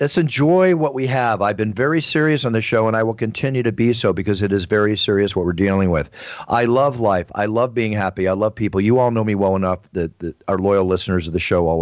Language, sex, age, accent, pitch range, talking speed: English, male, 50-69, American, 95-115 Hz, 265 wpm